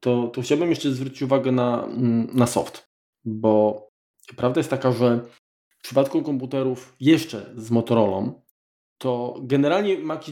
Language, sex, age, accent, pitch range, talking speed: Polish, male, 20-39, native, 120-135 Hz, 135 wpm